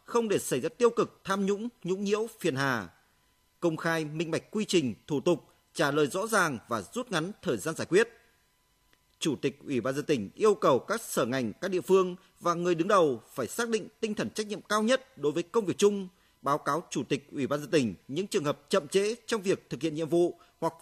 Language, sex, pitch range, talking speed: Vietnamese, male, 160-215 Hz, 240 wpm